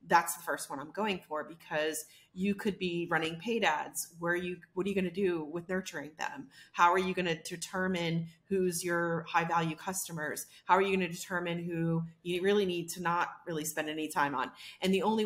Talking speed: 220 wpm